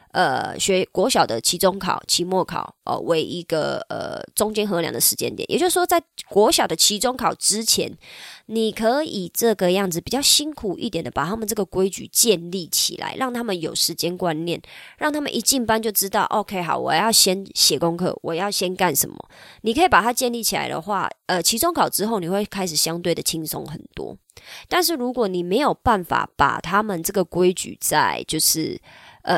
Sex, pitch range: male, 170-220 Hz